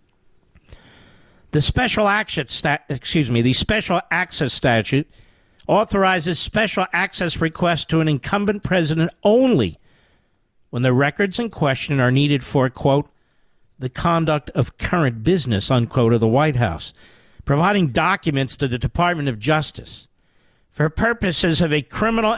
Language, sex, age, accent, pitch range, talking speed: English, male, 50-69, American, 130-185 Hz, 130 wpm